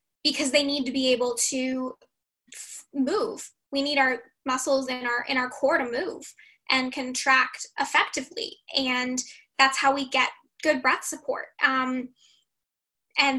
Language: English